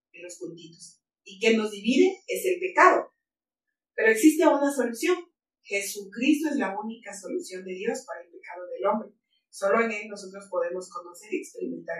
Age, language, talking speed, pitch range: 30-49, Spanish, 165 wpm, 180-275 Hz